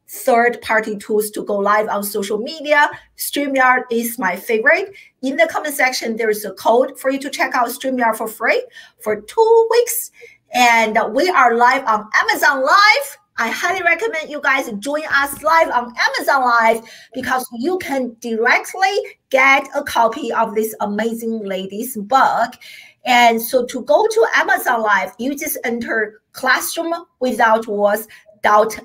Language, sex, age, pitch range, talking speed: English, female, 50-69, 215-295 Hz, 160 wpm